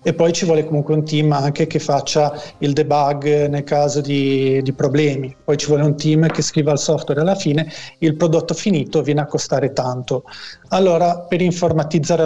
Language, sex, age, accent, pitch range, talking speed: Italian, male, 40-59, native, 145-165 Hz, 190 wpm